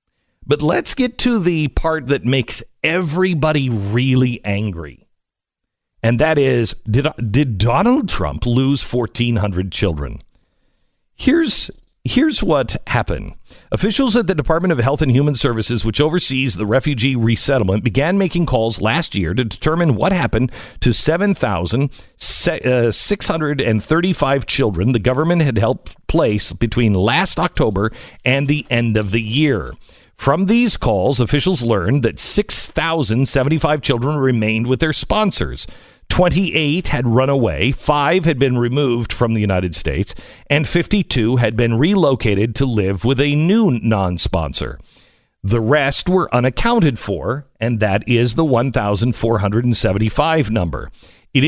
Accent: American